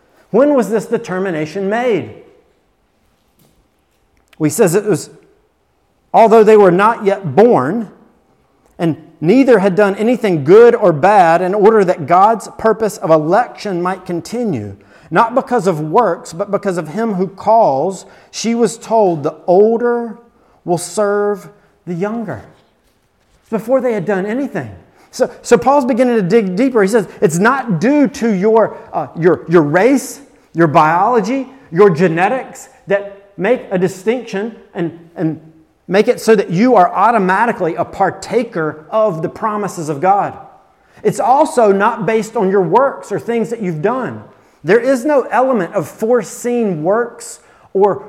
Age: 40-59